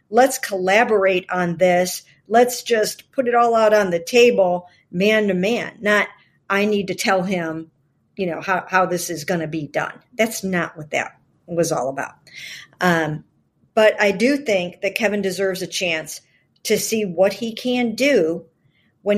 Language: English